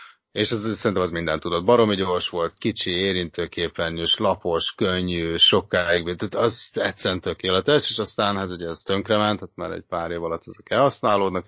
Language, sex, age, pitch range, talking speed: Hungarian, male, 30-49, 85-110 Hz, 180 wpm